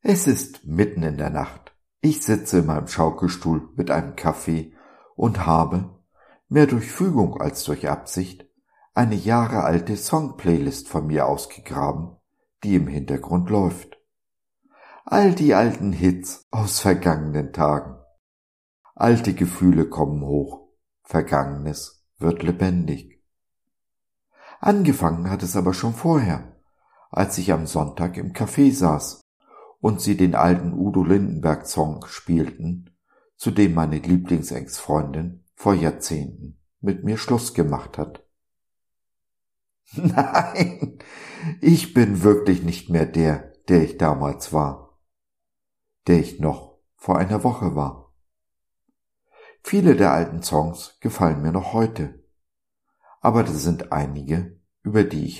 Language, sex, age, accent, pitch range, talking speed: German, male, 50-69, German, 75-105 Hz, 120 wpm